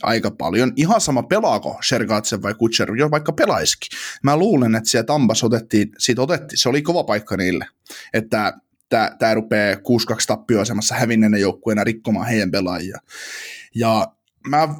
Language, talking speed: Finnish, 145 wpm